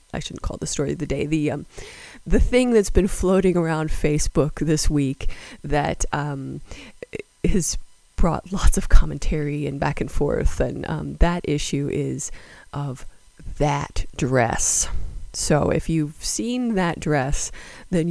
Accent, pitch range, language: American, 150-185 Hz, English